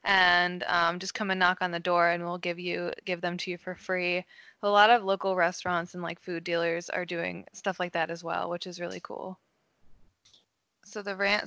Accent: American